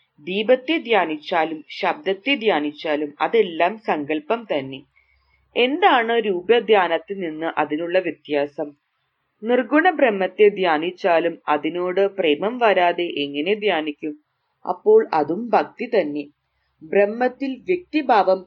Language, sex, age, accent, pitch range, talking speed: English, female, 30-49, Indian, 155-230 Hz, 90 wpm